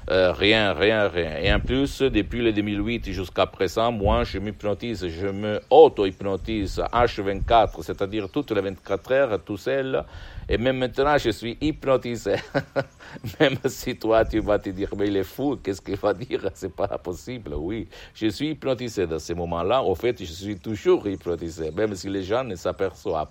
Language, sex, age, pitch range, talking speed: Italian, male, 60-79, 100-135 Hz, 185 wpm